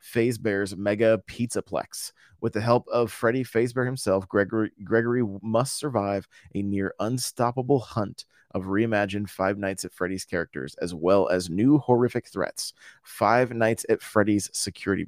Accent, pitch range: American, 105-125 Hz